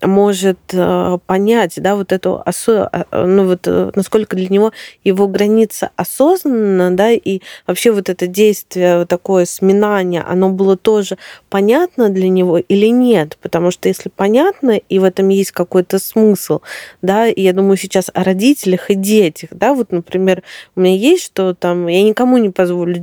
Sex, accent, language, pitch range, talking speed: female, native, Russian, 180-215 Hz, 160 wpm